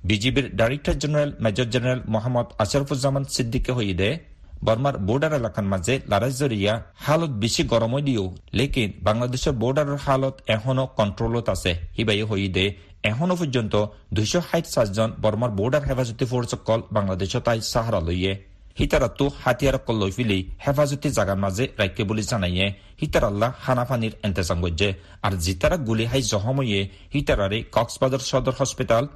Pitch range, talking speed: 100-135 Hz, 105 wpm